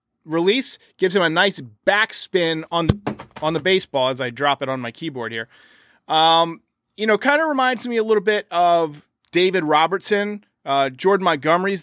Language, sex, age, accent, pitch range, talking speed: English, male, 30-49, American, 160-225 Hz, 180 wpm